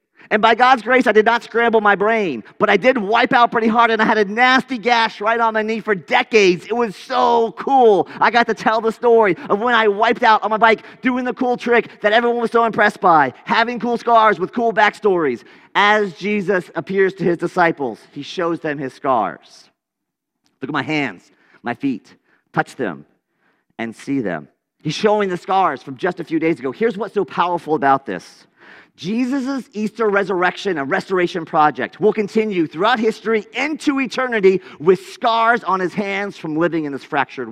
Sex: male